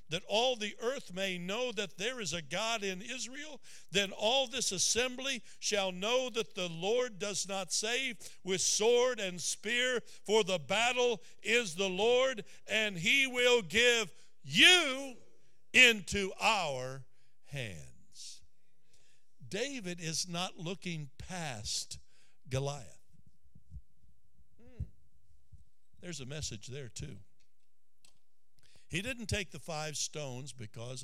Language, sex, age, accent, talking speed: English, male, 60-79, American, 120 wpm